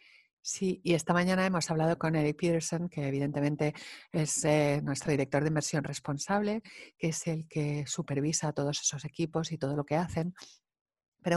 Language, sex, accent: English, female, Spanish